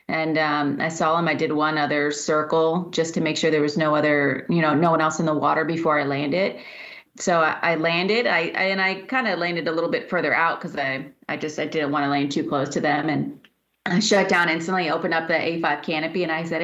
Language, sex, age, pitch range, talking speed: English, female, 30-49, 150-175 Hz, 255 wpm